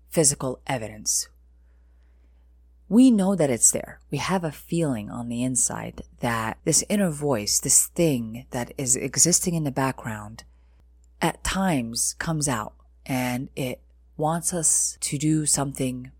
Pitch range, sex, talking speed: 105-160 Hz, female, 135 wpm